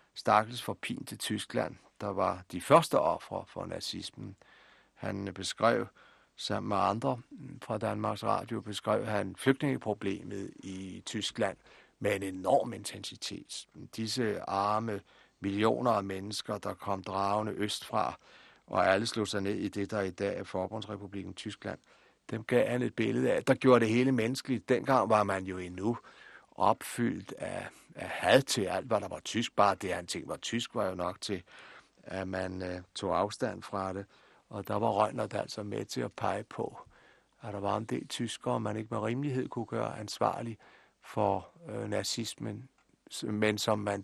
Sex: male